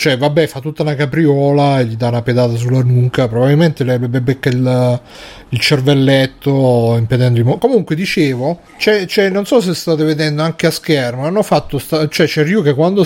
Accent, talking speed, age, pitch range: native, 195 wpm, 30-49, 125-155 Hz